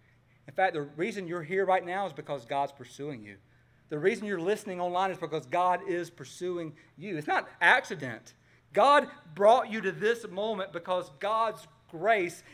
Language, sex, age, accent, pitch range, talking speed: English, male, 40-59, American, 125-180 Hz, 175 wpm